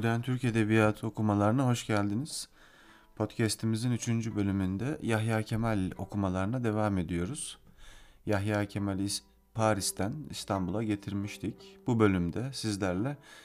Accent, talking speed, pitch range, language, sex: native, 100 wpm, 95-115 Hz, Turkish, male